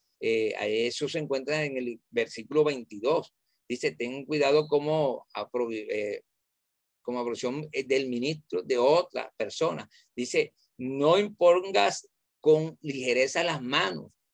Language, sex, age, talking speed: Spanish, male, 40-59, 115 wpm